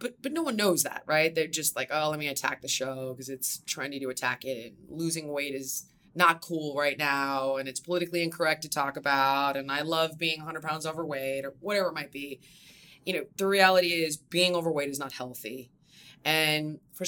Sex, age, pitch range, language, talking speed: female, 20-39, 140-190 Hz, English, 210 wpm